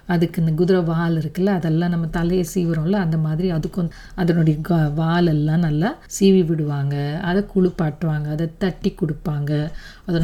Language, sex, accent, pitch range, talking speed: Tamil, female, native, 160-195 Hz, 135 wpm